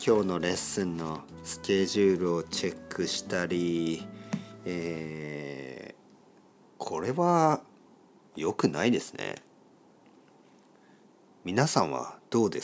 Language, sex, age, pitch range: Japanese, male, 40-59, 80-115 Hz